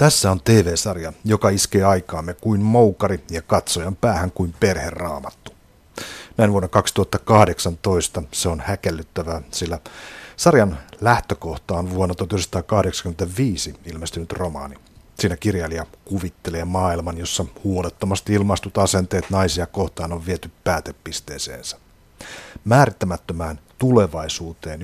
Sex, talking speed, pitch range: male, 100 wpm, 85-105 Hz